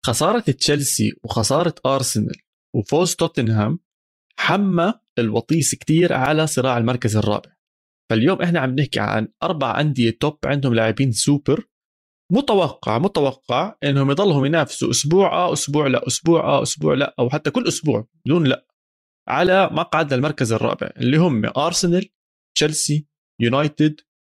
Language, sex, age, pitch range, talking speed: Arabic, male, 20-39, 120-170 Hz, 130 wpm